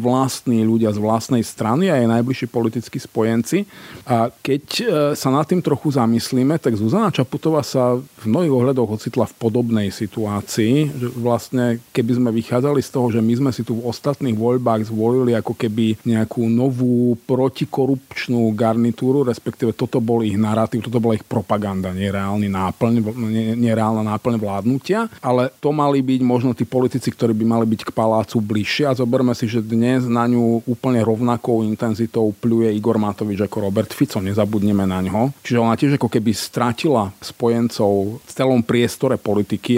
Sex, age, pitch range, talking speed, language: male, 40-59, 110-125 Hz, 160 wpm, Slovak